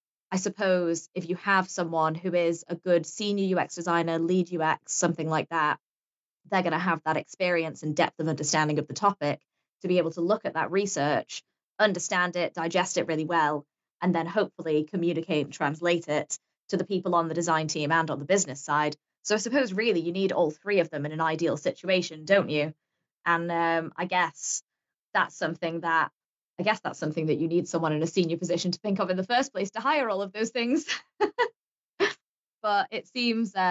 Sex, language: female, English